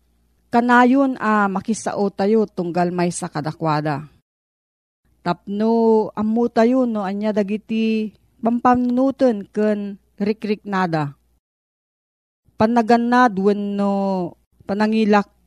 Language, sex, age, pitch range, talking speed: Filipino, female, 40-59, 175-230 Hz, 80 wpm